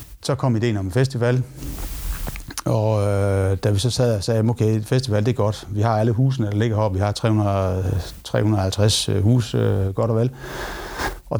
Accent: native